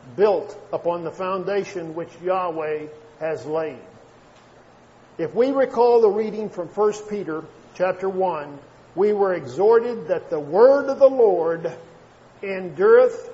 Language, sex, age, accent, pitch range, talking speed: English, male, 50-69, American, 180-270 Hz, 125 wpm